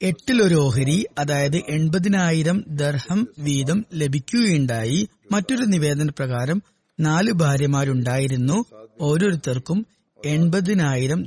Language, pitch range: Malayalam, 145-195 Hz